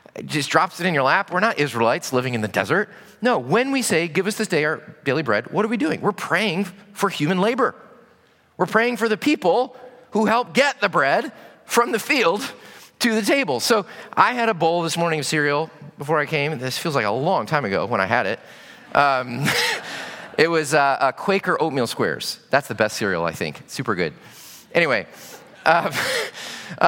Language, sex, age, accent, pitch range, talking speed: English, male, 30-49, American, 130-210 Hz, 200 wpm